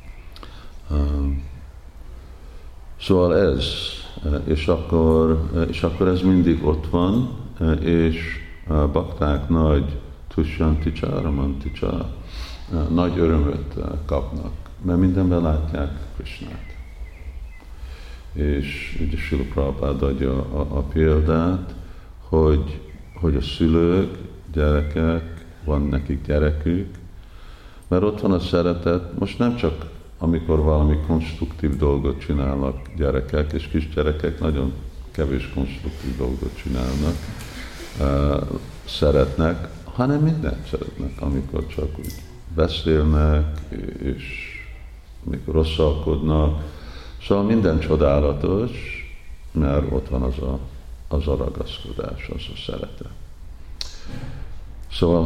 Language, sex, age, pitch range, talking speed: Hungarian, male, 50-69, 70-85 Hz, 100 wpm